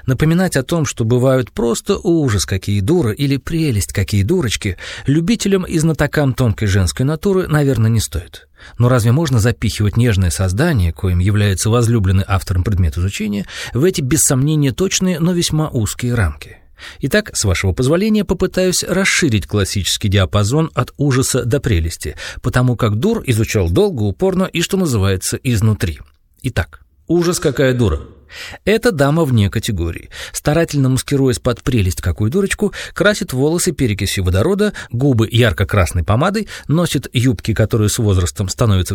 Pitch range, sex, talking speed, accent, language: 100-155 Hz, male, 140 wpm, native, Russian